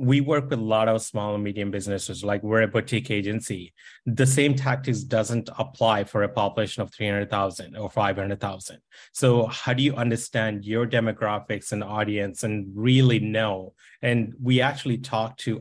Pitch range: 110-125 Hz